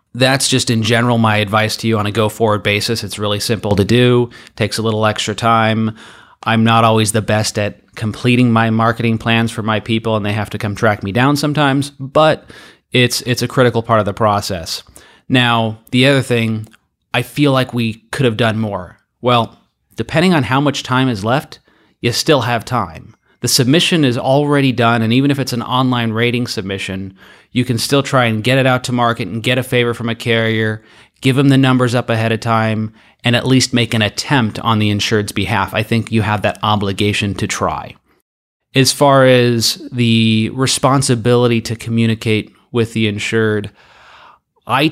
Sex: male